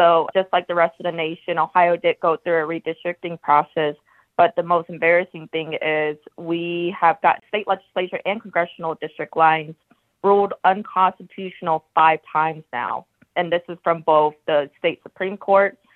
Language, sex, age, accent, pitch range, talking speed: English, female, 20-39, American, 160-180 Hz, 165 wpm